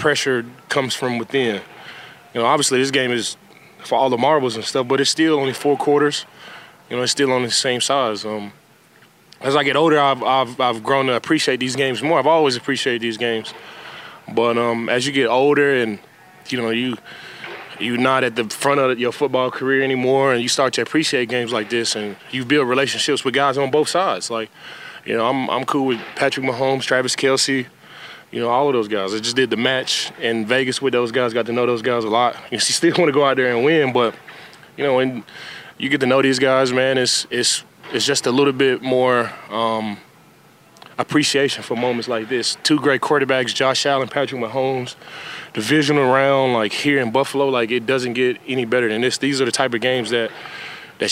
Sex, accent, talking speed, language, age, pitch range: male, American, 215 wpm, English, 20-39, 120-135 Hz